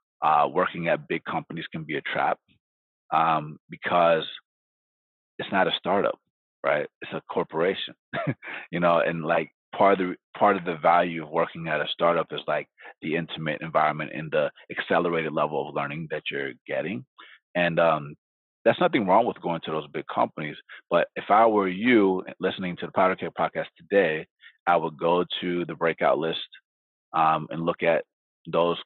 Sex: male